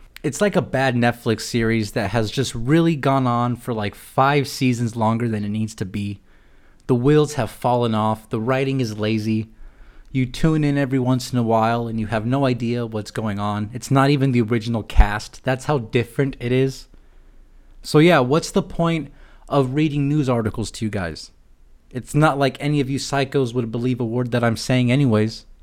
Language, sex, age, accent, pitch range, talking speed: English, male, 20-39, American, 115-145 Hz, 200 wpm